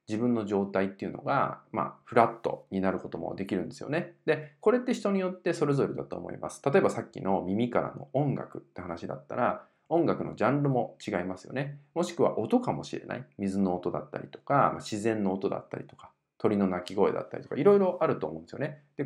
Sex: male